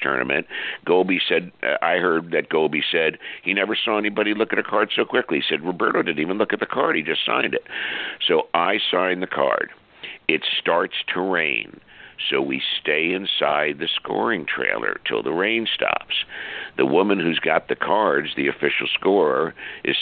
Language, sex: English, male